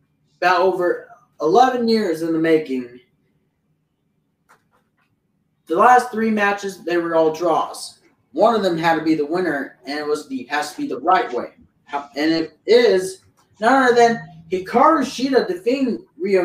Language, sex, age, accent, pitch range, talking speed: English, male, 30-49, American, 160-250 Hz, 155 wpm